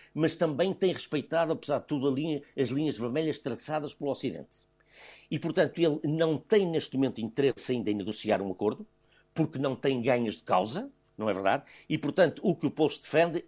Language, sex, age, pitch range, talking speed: Portuguese, male, 60-79, 120-155 Hz, 190 wpm